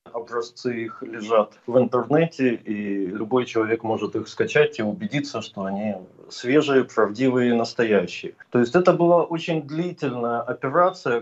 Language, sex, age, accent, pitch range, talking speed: Russian, male, 20-39, native, 115-145 Hz, 135 wpm